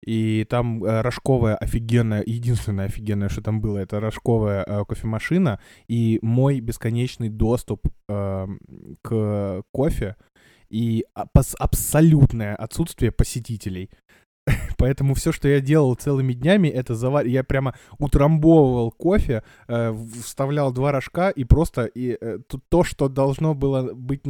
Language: Russian